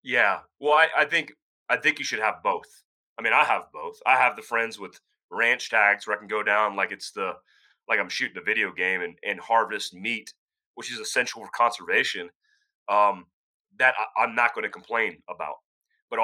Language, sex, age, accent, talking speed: English, male, 30-49, American, 205 wpm